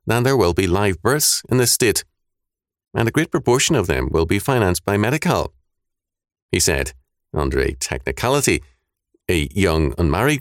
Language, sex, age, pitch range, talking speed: English, male, 40-59, 80-120 Hz, 160 wpm